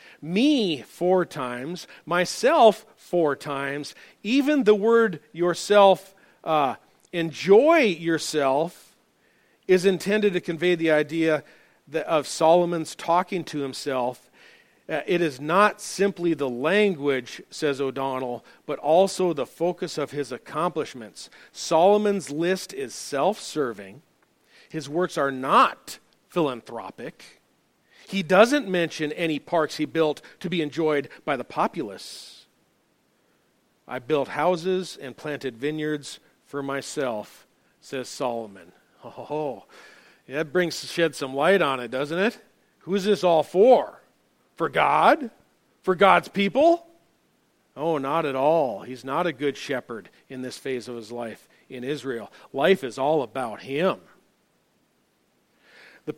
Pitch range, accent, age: 140-190 Hz, American, 40-59